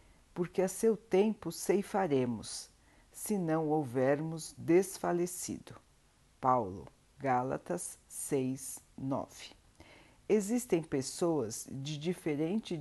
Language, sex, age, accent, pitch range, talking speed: Portuguese, female, 50-69, Brazilian, 140-185 Hz, 80 wpm